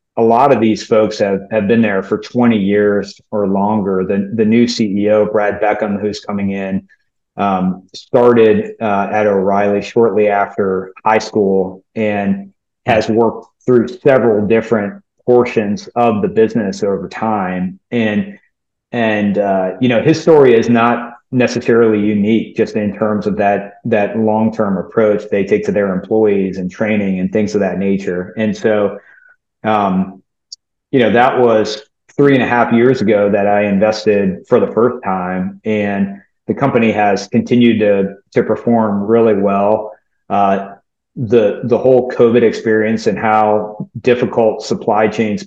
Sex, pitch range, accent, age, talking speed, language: male, 100-115 Hz, American, 30-49, 155 wpm, English